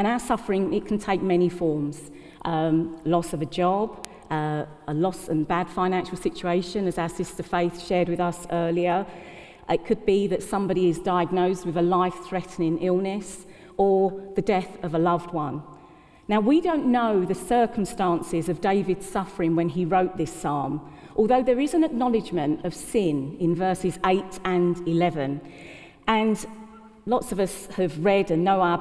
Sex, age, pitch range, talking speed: female, 40-59, 170-210 Hz, 165 wpm